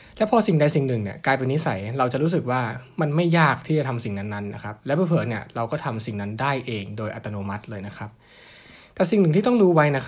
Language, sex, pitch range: Thai, male, 110-150 Hz